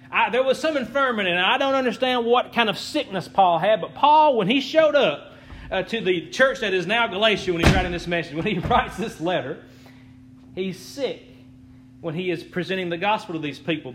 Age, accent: 30-49, American